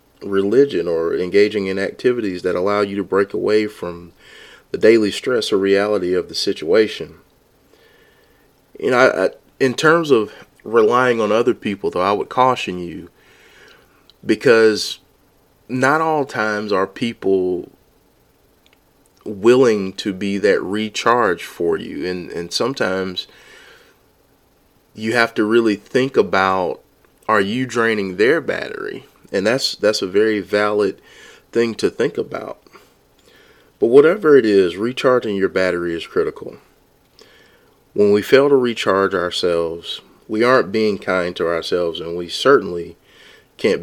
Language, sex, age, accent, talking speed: English, male, 30-49, American, 135 wpm